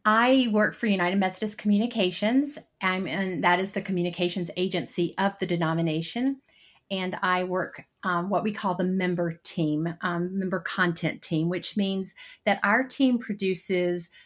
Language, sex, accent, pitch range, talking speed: English, female, American, 175-200 Hz, 145 wpm